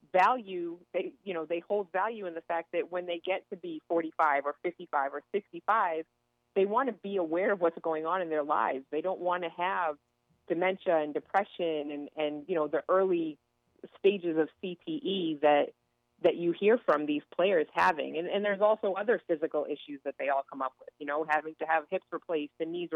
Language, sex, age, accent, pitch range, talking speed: English, female, 30-49, American, 150-185 Hz, 210 wpm